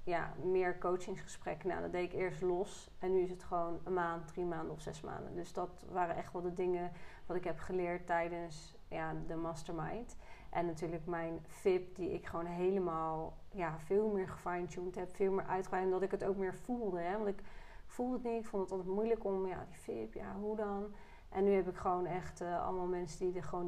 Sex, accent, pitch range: female, Dutch, 175-195 Hz